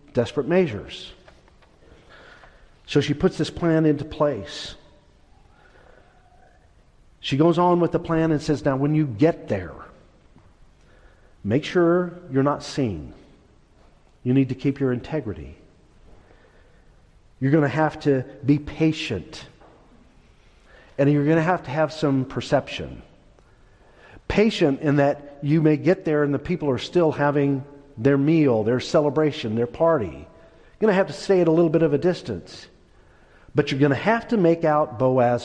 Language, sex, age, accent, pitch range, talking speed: English, male, 50-69, American, 125-160 Hz, 150 wpm